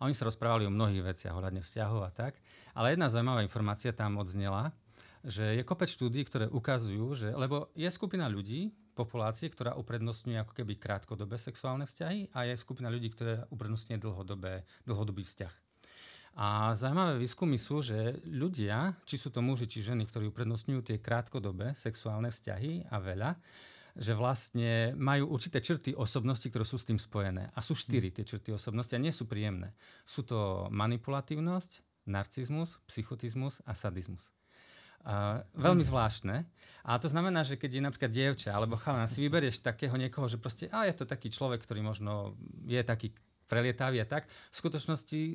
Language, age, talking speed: Slovak, 40-59, 165 wpm